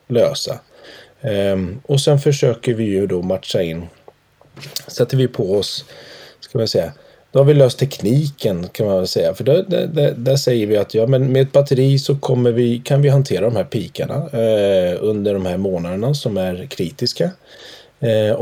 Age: 30-49